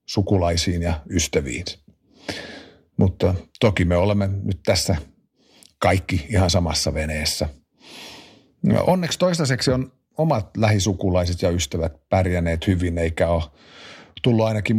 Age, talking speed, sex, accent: 50-69, 110 wpm, male, native